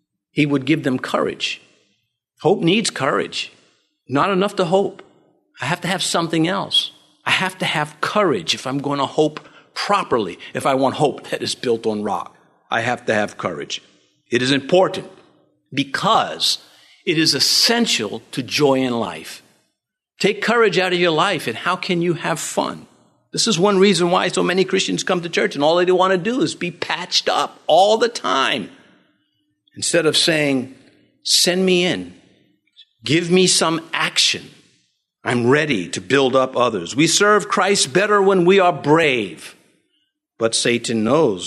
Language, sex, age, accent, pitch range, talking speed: English, male, 50-69, American, 130-185 Hz, 170 wpm